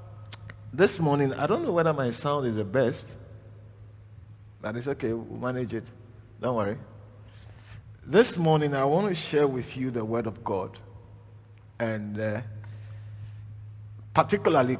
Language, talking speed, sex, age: English, 140 wpm, male, 50-69